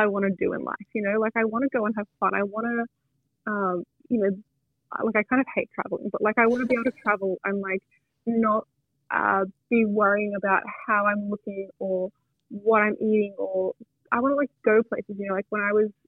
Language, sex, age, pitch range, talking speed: English, female, 20-39, 190-225 Hz, 240 wpm